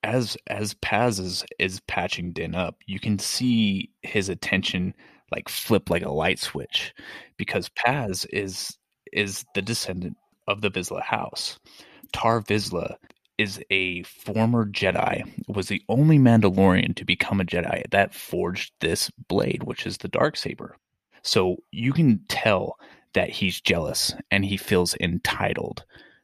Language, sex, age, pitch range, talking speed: English, male, 30-49, 90-110 Hz, 140 wpm